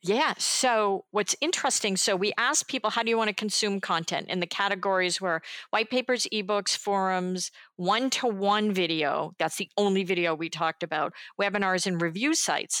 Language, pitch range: English, 175-220 Hz